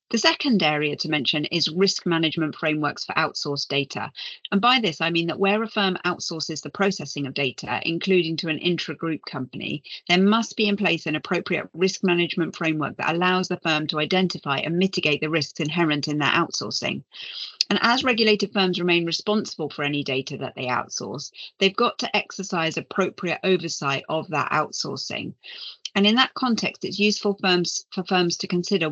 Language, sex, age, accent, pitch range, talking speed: English, female, 40-59, British, 155-195 Hz, 180 wpm